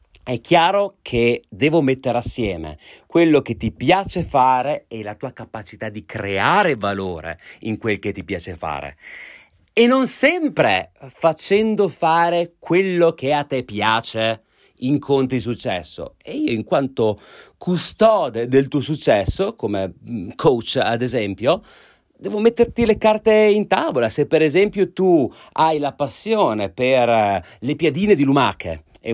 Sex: male